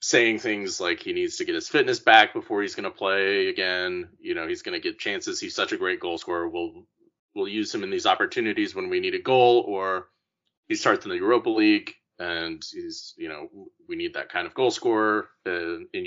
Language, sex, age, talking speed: English, male, 30-49, 230 wpm